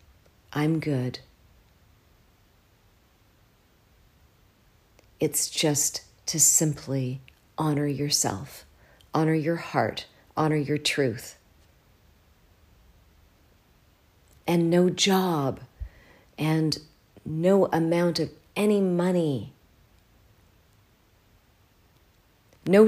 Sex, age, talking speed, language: female, 40-59, 65 wpm, English